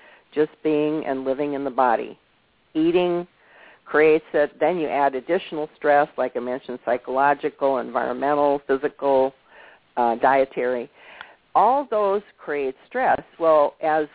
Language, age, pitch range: English, 50-69, 135-165 Hz